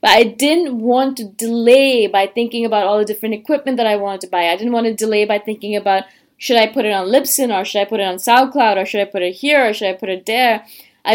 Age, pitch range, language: 20-39, 210-265 Hz, English